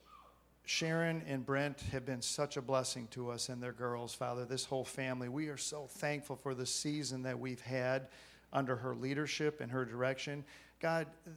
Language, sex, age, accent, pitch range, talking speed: English, male, 50-69, American, 130-150 Hz, 180 wpm